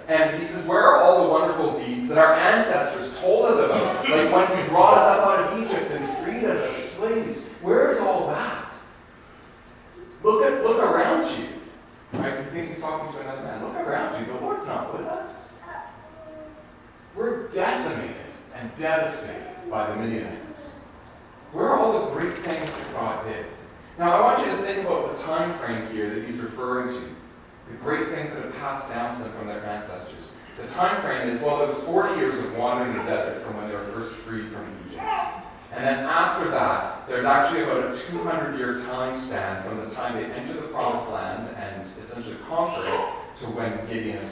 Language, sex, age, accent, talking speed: English, male, 40-59, American, 195 wpm